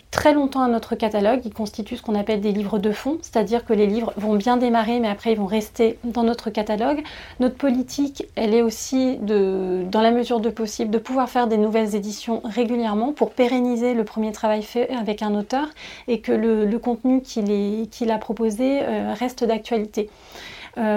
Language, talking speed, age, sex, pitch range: French, 200 wpm, 30-49, female, 210-240 Hz